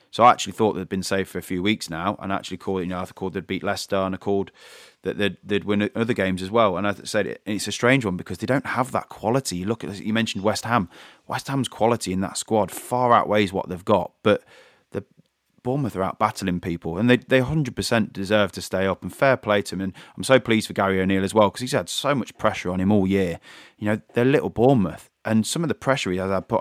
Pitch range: 95-110 Hz